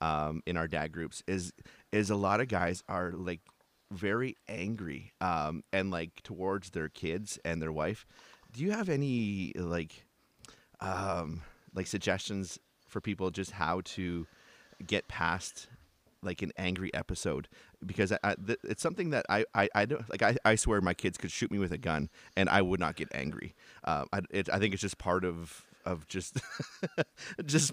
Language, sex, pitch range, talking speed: English, male, 90-110 Hz, 170 wpm